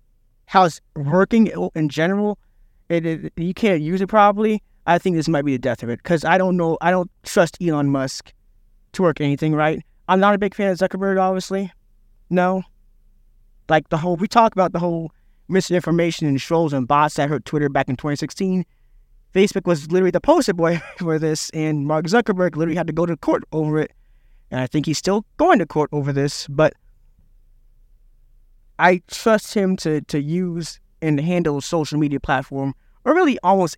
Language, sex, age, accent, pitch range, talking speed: English, male, 20-39, American, 135-185 Hz, 190 wpm